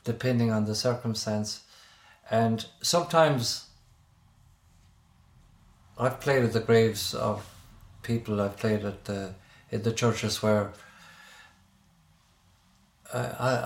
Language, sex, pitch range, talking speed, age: English, male, 100-115 Hz, 95 wpm, 50-69